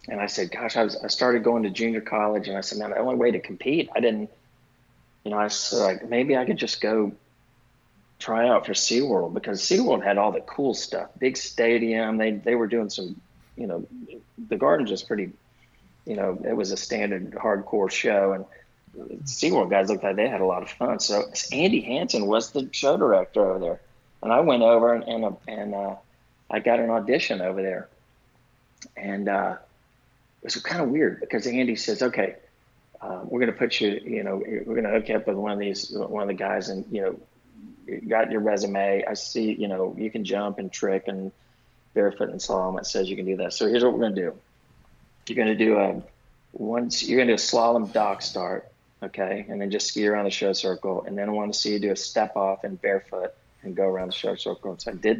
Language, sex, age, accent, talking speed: English, male, 40-59, American, 225 wpm